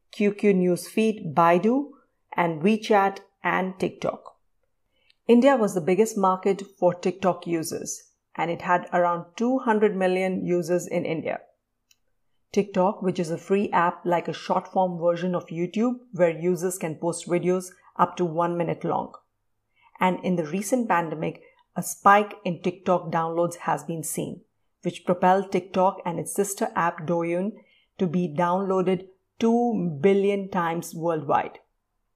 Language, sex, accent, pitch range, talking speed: Hindi, female, native, 175-200 Hz, 140 wpm